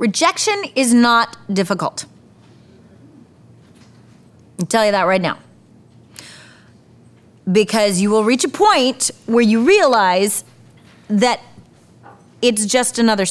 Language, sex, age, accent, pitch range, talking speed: English, female, 30-49, American, 190-245 Hz, 105 wpm